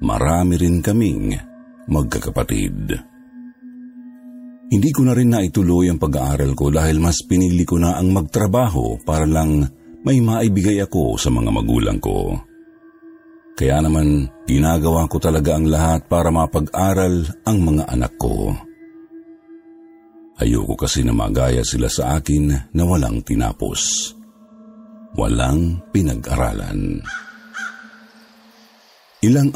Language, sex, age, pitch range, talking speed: Filipino, male, 50-69, 75-110 Hz, 110 wpm